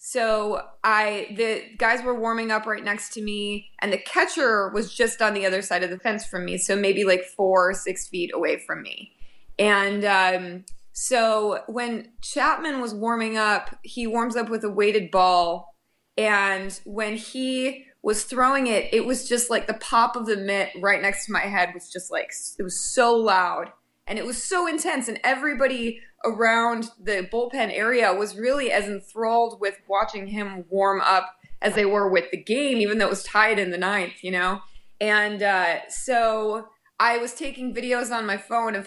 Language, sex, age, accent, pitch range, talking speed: English, female, 20-39, American, 190-230 Hz, 195 wpm